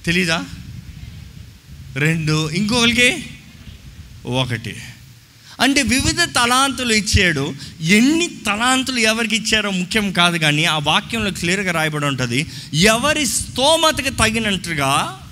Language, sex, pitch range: Telugu, male, 155-230 Hz